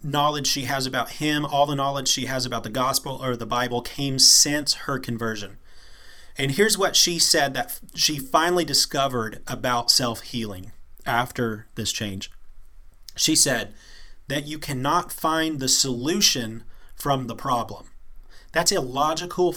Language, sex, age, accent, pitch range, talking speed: English, male, 30-49, American, 120-150 Hz, 145 wpm